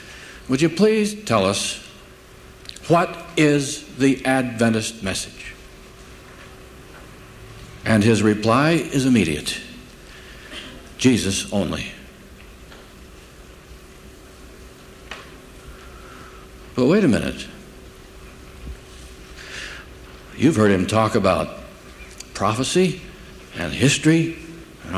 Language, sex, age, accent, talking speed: English, male, 60-79, American, 70 wpm